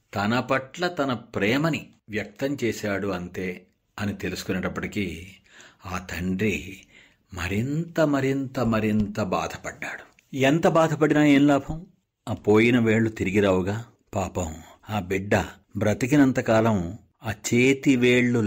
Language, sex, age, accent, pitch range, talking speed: Telugu, male, 60-79, native, 95-120 Hz, 100 wpm